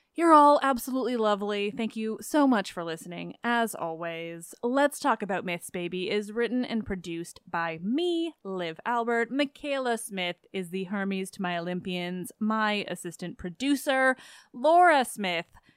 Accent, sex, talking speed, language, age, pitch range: American, female, 145 wpm, English, 20-39, 185-260 Hz